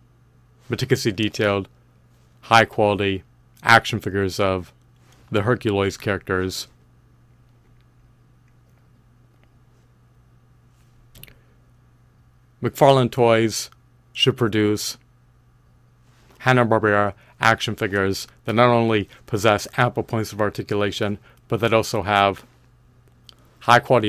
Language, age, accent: English, 30-49, American